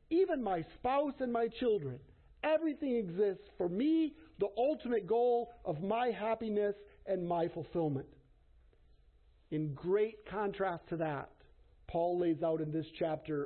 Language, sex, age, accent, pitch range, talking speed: English, male, 50-69, American, 140-205 Hz, 135 wpm